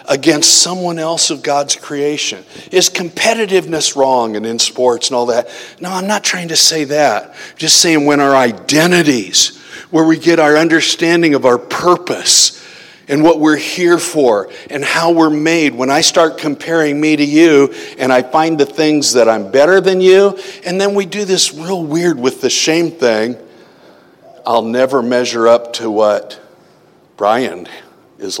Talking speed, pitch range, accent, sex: 170 wpm, 130-175 Hz, American, male